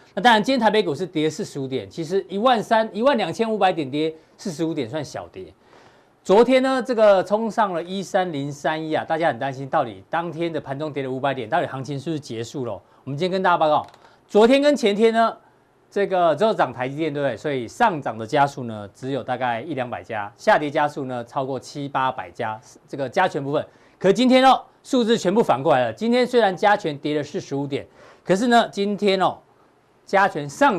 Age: 40-59